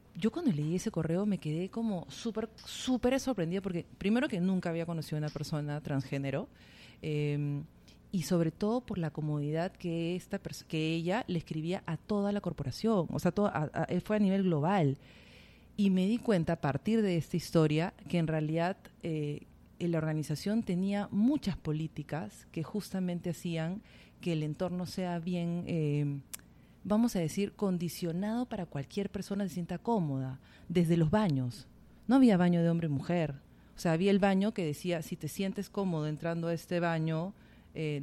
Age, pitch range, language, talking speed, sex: 40-59, 155-200 Hz, Spanish, 180 wpm, female